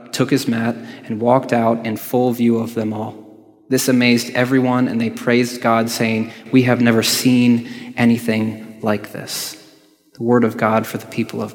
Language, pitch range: English, 120-140 Hz